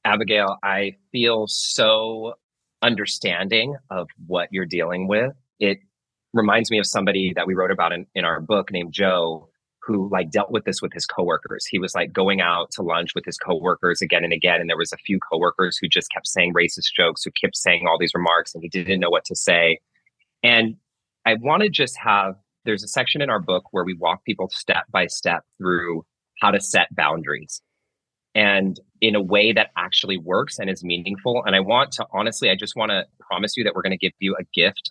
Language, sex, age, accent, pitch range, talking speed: English, male, 30-49, American, 95-110 Hz, 215 wpm